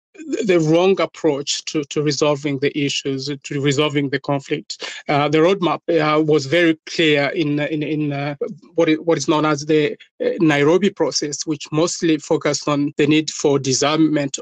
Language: English